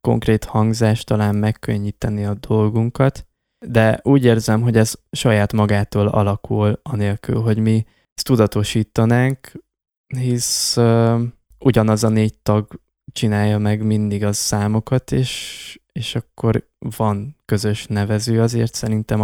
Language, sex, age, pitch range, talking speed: Hungarian, male, 20-39, 105-115 Hz, 120 wpm